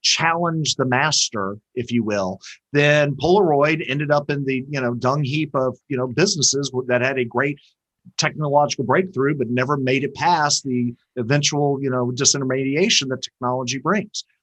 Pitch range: 125-170 Hz